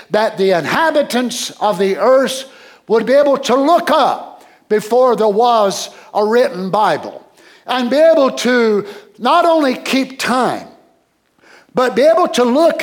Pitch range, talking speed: 220-270 Hz, 145 wpm